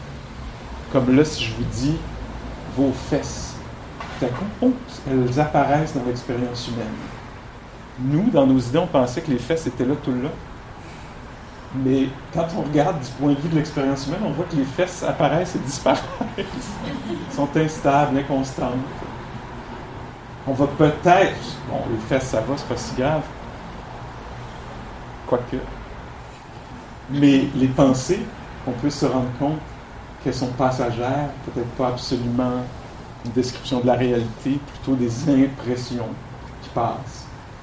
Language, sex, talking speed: English, male, 140 wpm